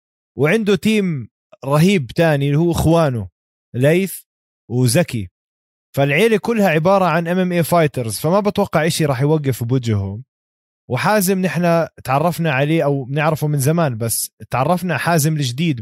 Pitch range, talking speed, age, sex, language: 130-175 Hz, 130 wpm, 20-39, male, Arabic